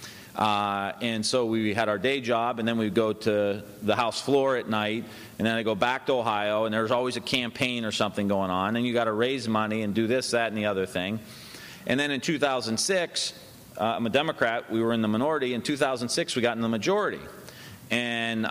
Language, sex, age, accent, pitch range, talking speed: English, male, 40-59, American, 110-130 Hz, 225 wpm